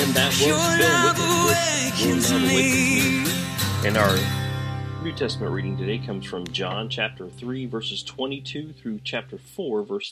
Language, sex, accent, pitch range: English, male, American, 95-130 Hz